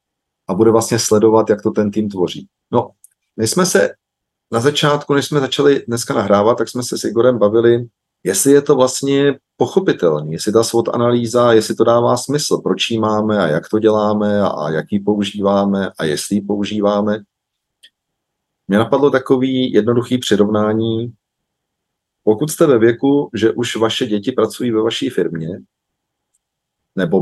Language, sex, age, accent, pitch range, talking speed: Czech, male, 40-59, native, 105-125 Hz, 160 wpm